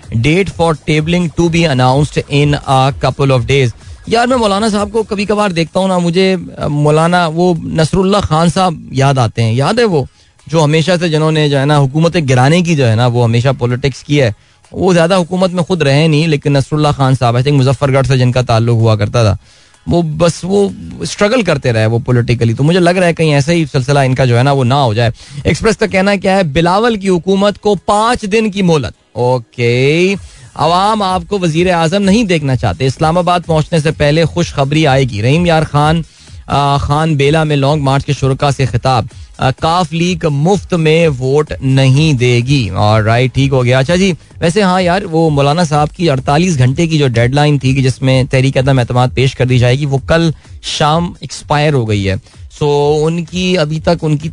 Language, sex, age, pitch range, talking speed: Hindi, male, 20-39, 130-170 Hz, 200 wpm